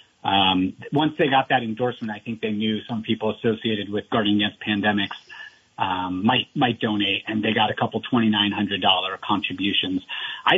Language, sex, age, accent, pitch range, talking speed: English, male, 30-49, American, 105-125 Hz, 185 wpm